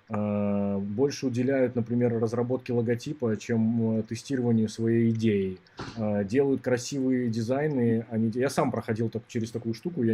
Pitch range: 110-130 Hz